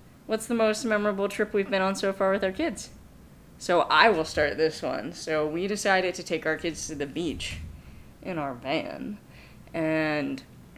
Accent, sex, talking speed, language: American, female, 185 wpm, English